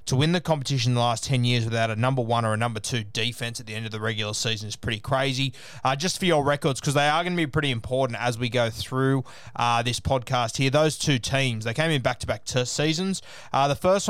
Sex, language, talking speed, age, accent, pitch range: male, English, 260 wpm, 20-39, Australian, 120-145 Hz